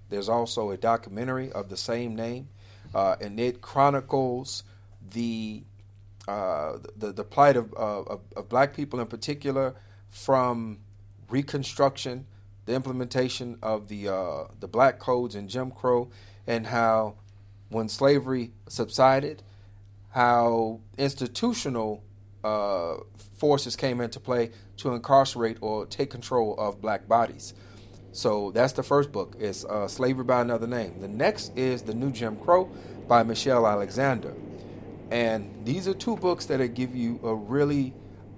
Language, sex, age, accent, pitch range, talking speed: English, male, 40-59, American, 100-125 Hz, 140 wpm